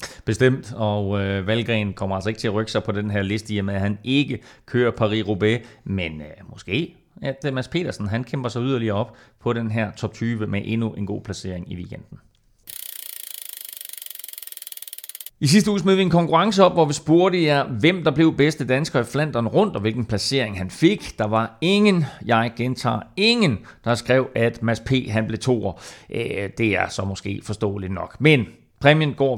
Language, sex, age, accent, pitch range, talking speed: Danish, male, 30-49, native, 110-150 Hz, 195 wpm